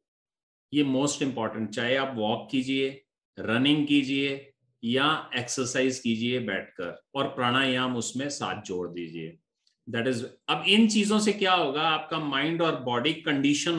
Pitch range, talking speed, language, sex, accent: 130-175 Hz, 140 wpm, Hindi, male, native